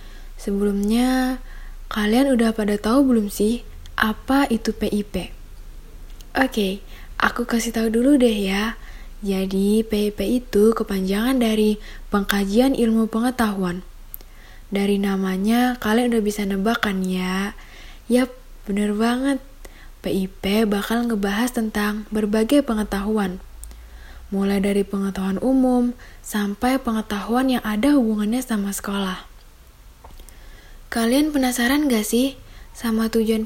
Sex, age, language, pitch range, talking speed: female, 10-29, Indonesian, 200-245 Hz, 105 wpm